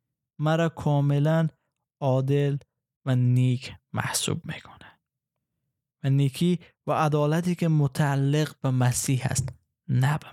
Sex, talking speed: male, 105 wpm